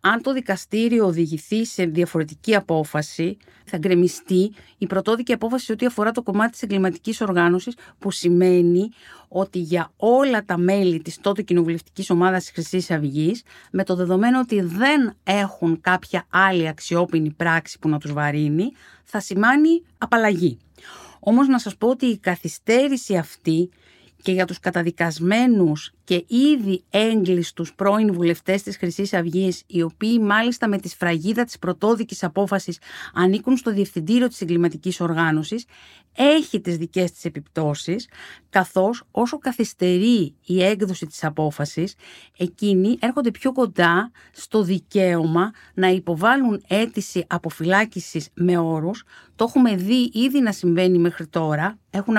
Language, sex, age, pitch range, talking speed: Greek, female, 50-69, 170-220 Hz, 135 wpm